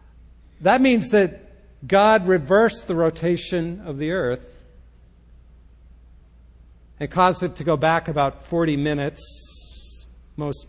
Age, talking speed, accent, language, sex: 60-79, 110 wpm, American, English, male